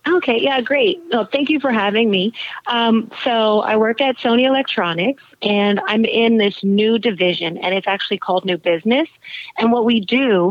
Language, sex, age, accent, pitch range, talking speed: English, female, 30-49, American, 195-245 Hz, 175 wpm